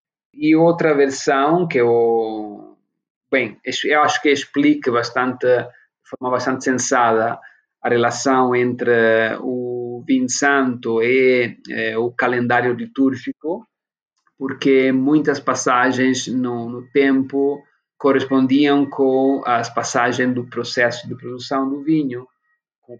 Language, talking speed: Portuguese, 110 wpm